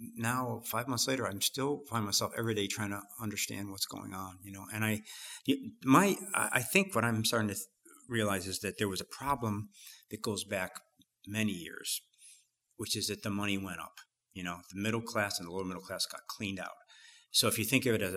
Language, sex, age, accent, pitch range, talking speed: English, male, 50-69, American, 95-115 Hz, 220 wpm